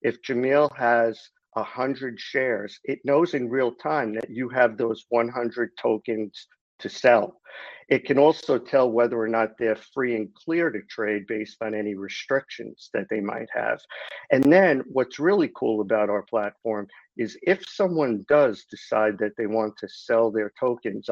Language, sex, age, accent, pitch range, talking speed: English, male, 50-69, American, 110-135 Hz, 170 wpm